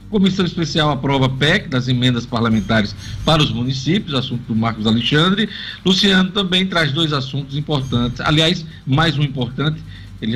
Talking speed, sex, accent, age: 145 wpm, male, Brazilian, 50-69